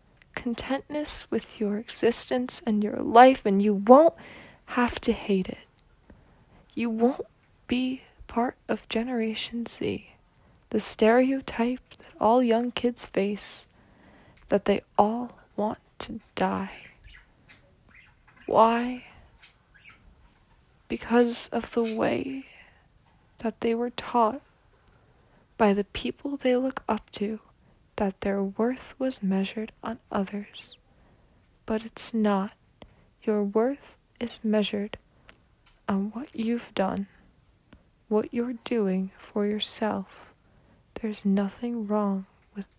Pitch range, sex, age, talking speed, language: 200-240 Hz, female, 20-39, 110 wpm, English